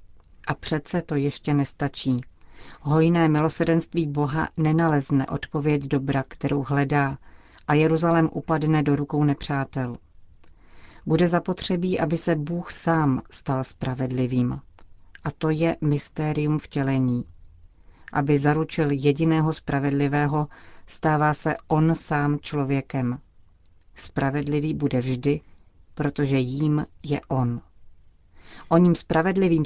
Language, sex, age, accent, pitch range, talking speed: Czech, female, 40-59, native, 130-155 Hz, 105 wpm